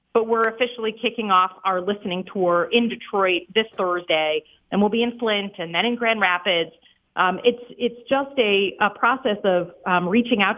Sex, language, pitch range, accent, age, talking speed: female, English, 185-245 Hz, American, 40-59, 185 wpm